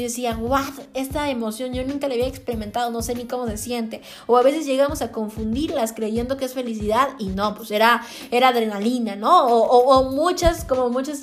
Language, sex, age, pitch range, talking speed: Spanish, female, 20-39, 230-285 Hz, 210 wpm